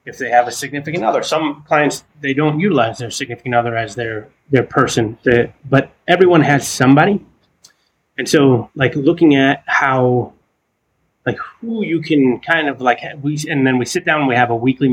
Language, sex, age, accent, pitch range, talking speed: English, male, 30-49, American, 120-145 Hz, 190 wpm